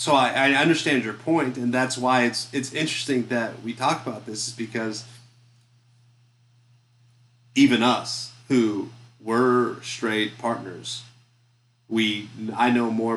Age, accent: 30-49, American